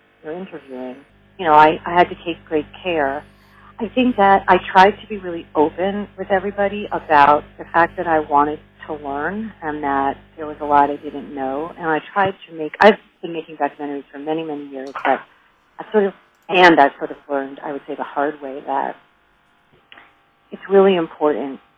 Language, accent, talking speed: English, American, 195 wpm